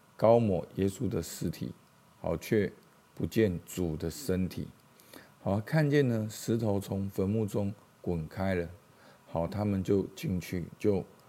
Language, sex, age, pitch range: Chinese, male, 50-69, 90-115 Hz